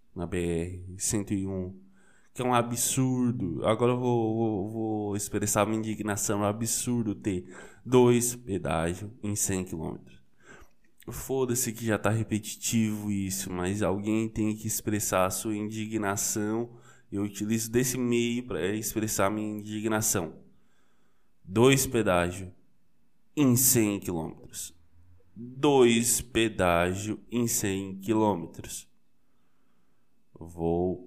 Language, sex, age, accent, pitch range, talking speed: Portuguese, male, 20-39, Brazilian, 95-120 Hz, 110 wpm